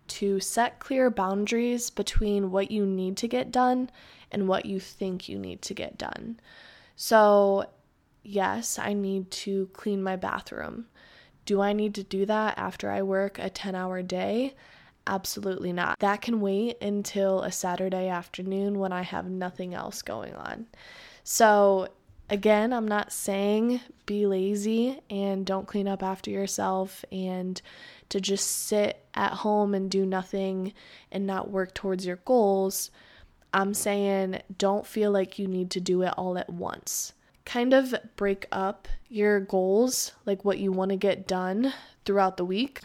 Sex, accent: female, American